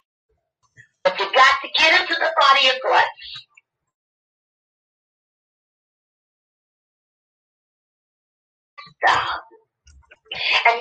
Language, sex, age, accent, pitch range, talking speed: English, female, 40-59, American, 255-350 Hz, 60 wpm